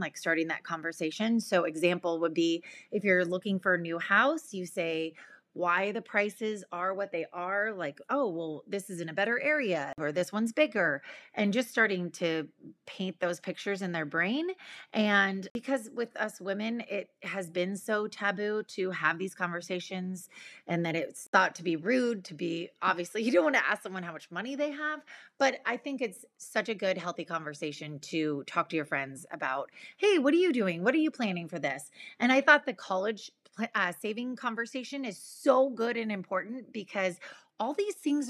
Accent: American